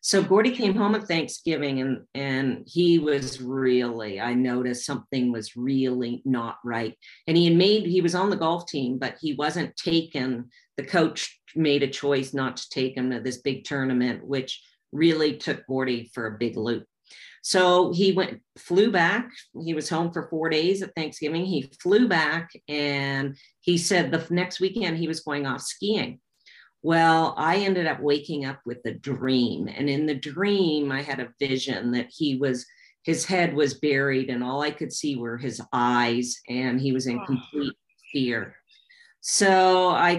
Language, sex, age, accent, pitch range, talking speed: English, female, 50-69, American, 130-165 Hz, 180 wpm